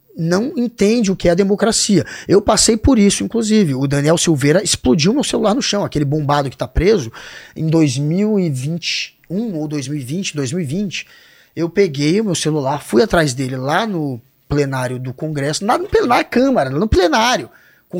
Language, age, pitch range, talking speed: Portuguese, 20-39, 145-205 Hz, 165 wpm